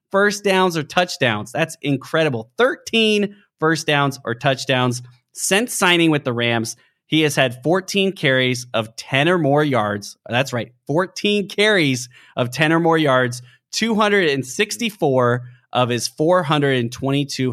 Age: 30-49